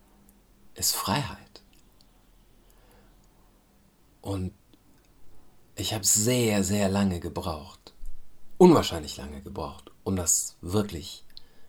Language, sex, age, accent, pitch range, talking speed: German, male, 50-69, German, 90-100 Hz, 75 wpm